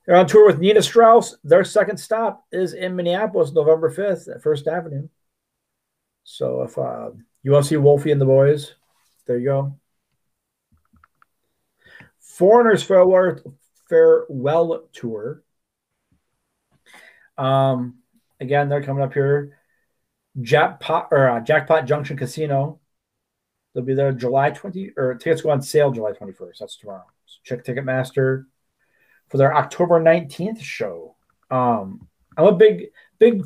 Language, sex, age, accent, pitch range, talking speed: English, male, 40-59, American, 135-185 Hz, 135 wpm